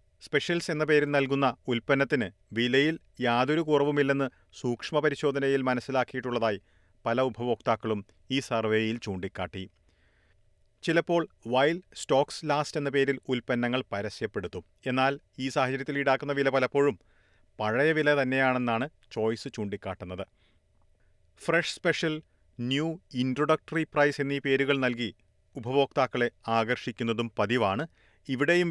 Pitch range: 105-140 Hz